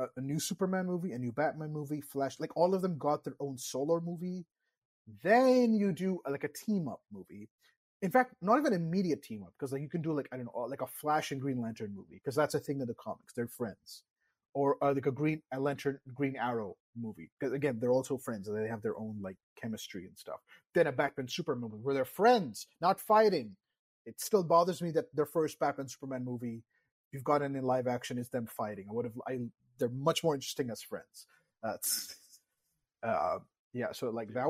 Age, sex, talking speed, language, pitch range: 30-49, male, 220 wpm, English, 120-165 Hz